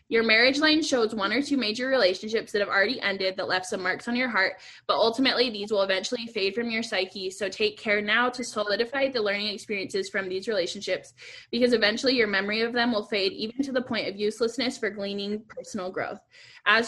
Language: English